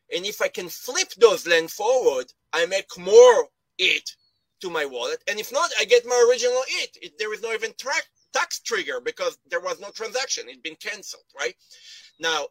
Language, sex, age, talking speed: English, male, 30-49, 195 wpm